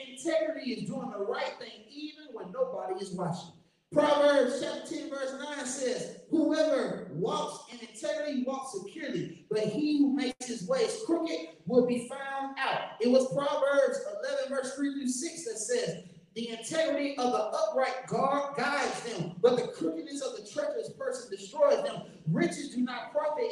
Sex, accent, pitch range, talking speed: male, American, 225-310 Hz, 165 wpm